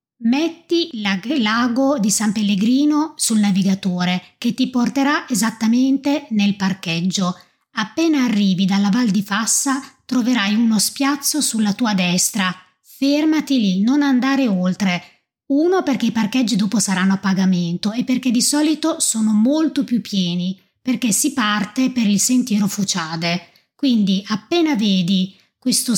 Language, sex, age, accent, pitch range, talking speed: Italian, female, 20-39, native, 190-255 Hz, 130 wpm